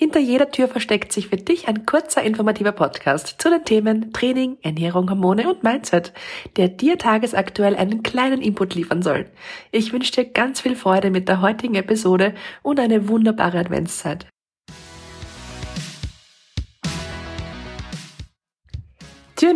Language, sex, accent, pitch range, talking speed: German, female, German, 175-230 Hz, 130 wpm